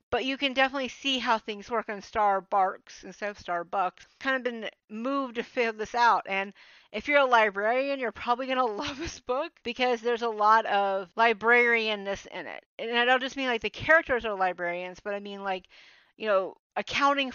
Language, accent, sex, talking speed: English, American, female, 205 wpm